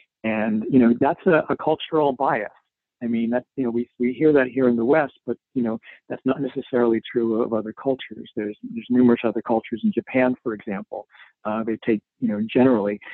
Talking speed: 210 wpm